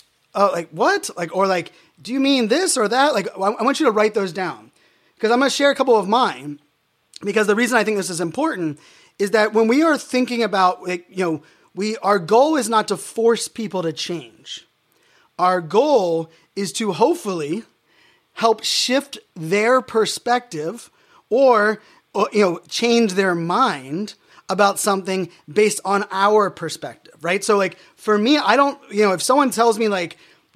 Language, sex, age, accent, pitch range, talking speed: English, male, 30-49, American, 175-220 Hz, 185 wpm